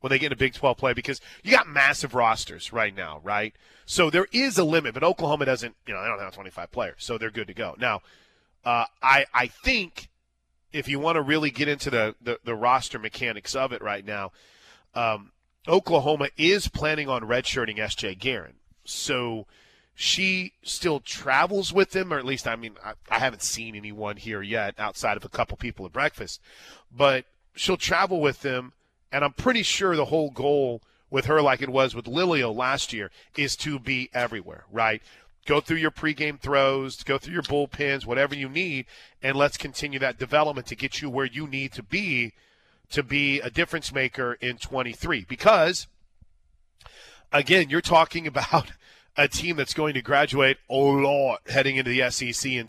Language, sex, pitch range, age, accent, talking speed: English, male, 120-150 Hz, 30-49, American, 190 wpm